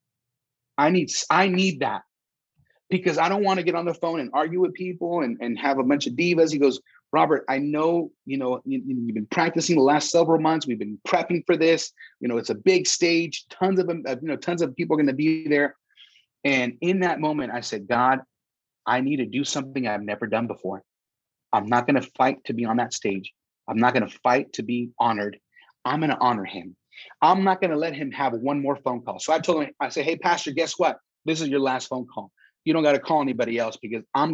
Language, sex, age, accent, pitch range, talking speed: English, male, 30-49, American, 130-175 Hz, 240 wpm